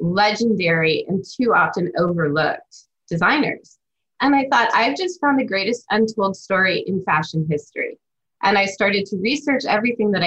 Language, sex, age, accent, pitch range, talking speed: English, female, 20-39, American, 170-220 Hz, 150 wpm